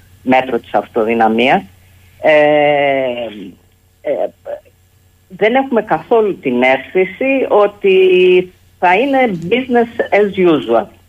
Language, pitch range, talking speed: Greek, 115-170 Hz, 75 wpm